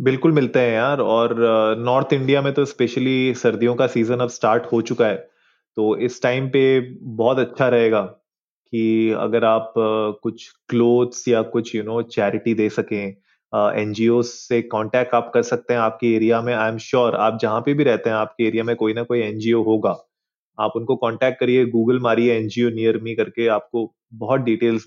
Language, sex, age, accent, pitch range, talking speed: Hindi, male, 20-39, native, 110-130 Hz, 185 wpm